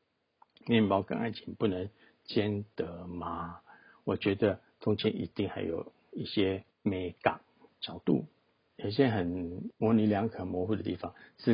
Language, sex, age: Chinese, male, 50-69